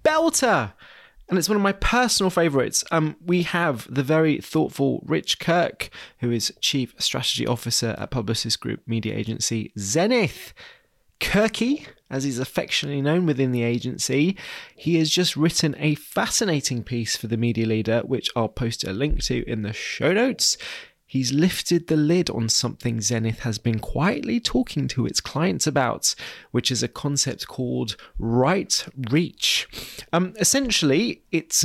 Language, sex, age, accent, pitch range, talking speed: English, male, 20-39, British, 120-170 Hz, 150 wpm